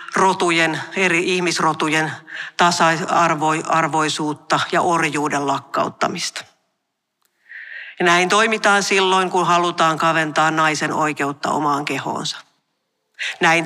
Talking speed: 90 wpm